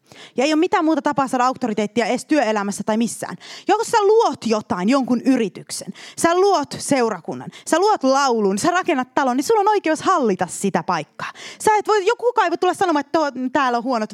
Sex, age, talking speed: female, 20-39, 190 wpm